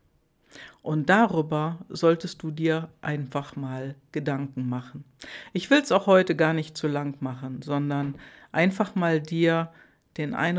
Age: 60-79